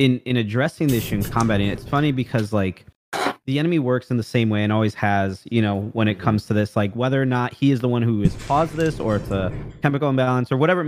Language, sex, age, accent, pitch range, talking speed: English, male, 20-39, American, 105-130 Hz, 270 wpm